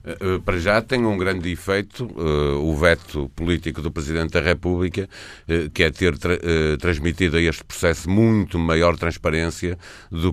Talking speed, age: 165 wpm, 50-69